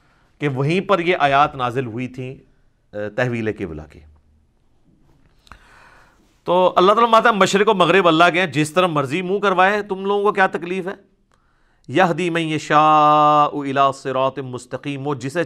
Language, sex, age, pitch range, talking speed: Urdu, male, 50-69, 135-185 Hz, 145 wpm